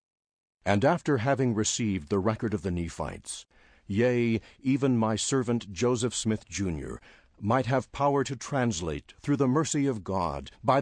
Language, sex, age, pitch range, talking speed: English, male, 60-79, 95-130 Hz, 150 wpm